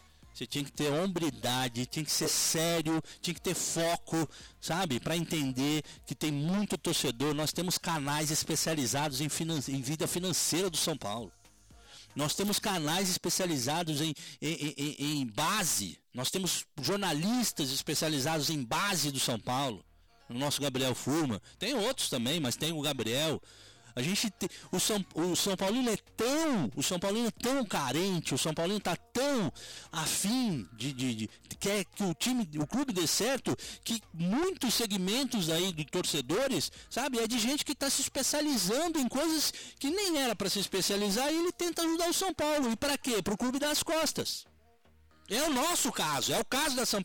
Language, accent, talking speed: Portuguese, Brazilian, 175 wpm